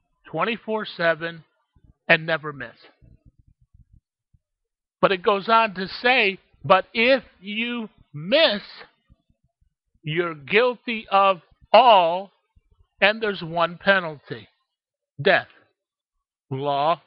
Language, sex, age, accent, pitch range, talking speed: English, male, 50-69, American, 160-220 Hz, 80 wpm